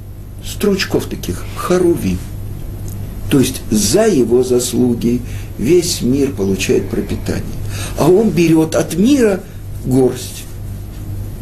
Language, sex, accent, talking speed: Russian, male, native, 95 wpm